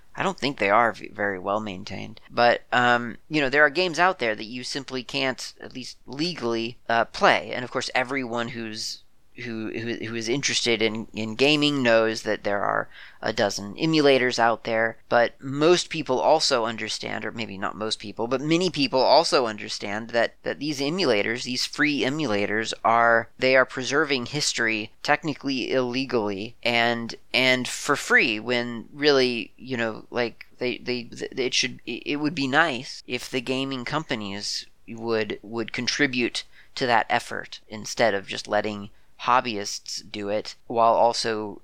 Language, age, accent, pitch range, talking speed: English, 30-49, American, 110-135 Hz, 160 wpm